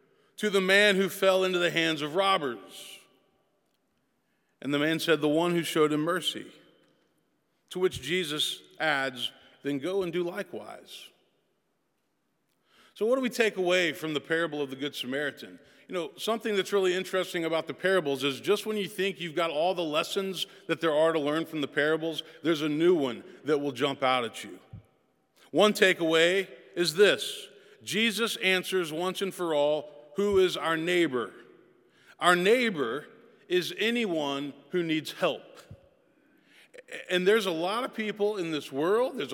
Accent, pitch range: American, 155-210 Hz